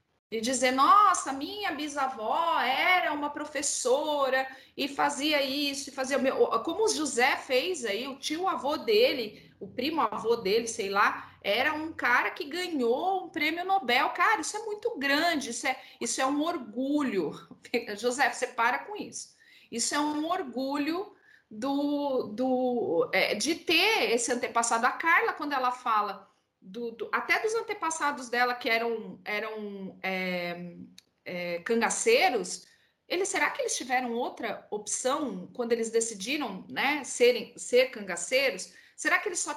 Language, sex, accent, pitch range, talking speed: Portuguese, female, Brazilian, 230-320 Hz, 150 wpm